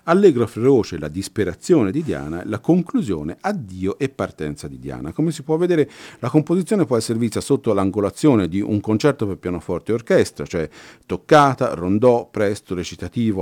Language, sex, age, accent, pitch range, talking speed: Italian, male, 50-69, native, 95-140 Hz, 160 wpm